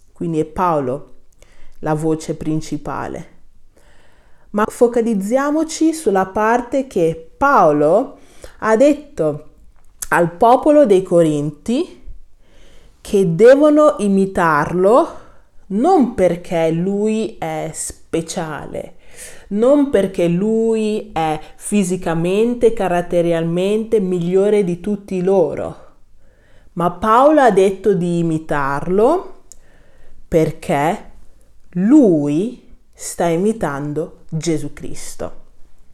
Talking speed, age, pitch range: 80 wpm, 30-49, 160-225 Hz